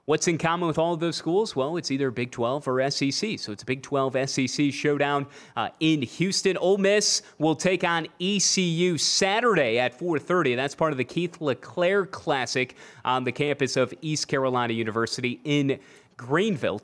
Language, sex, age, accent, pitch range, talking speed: English, male, 30-49, American, 140-180 Hz, 180 wpm